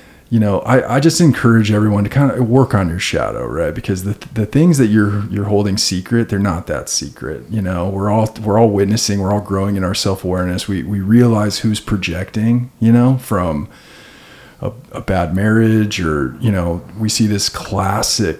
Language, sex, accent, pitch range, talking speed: English, male, American, 100-120 Hz, 200 wpm